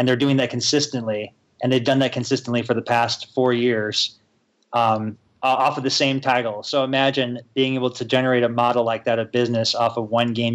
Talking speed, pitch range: 210 wpm, 115-130 Hz